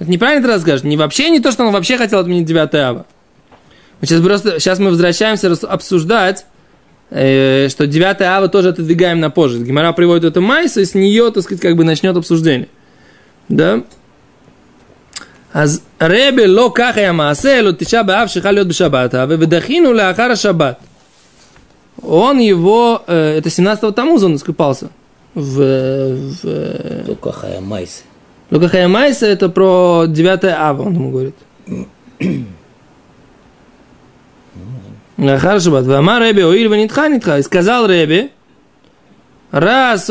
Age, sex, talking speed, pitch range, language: 20-39, male, 125 wpm, 165-230 Hz, Russian